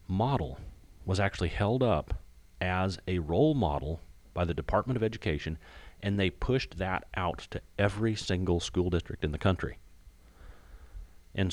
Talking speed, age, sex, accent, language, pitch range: 145 wpm, 40-59, male, American, English, 80-100 Hz